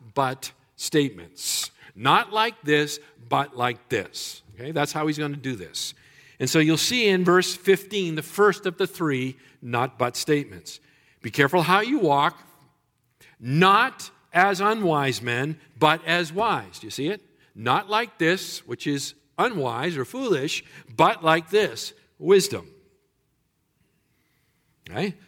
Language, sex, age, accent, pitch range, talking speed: English, male, 50-69, American, 135-190 Hz, 140 wpm